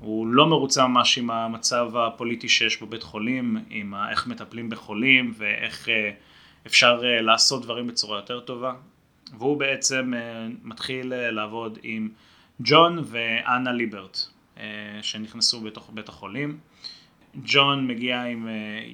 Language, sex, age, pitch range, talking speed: Hebrew, male, 30-49, 105-135 Hz, 110 wpm